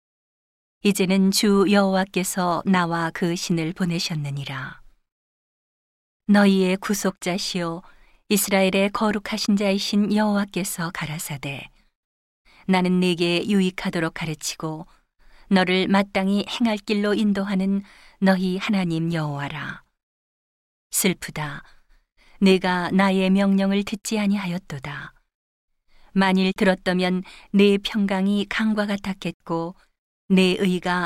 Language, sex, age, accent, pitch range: Korean, female, 40-59, native, 170-200 Hz